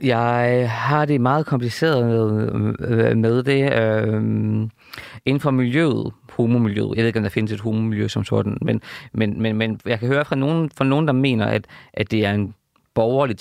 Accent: native